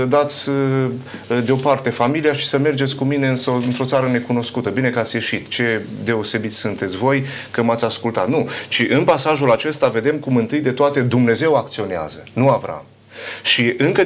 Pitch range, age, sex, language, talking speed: 115-140 Hz, 30-49, male, Romanian, 160 wpm